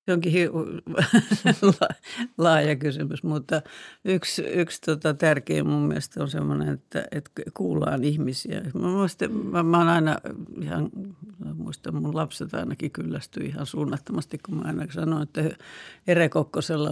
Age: 60-79